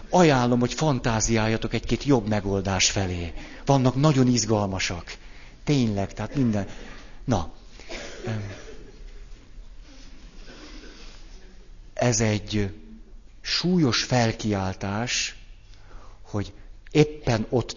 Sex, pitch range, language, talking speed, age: male, 90-120 Hz, Hungarian, 70 wpm, 60-79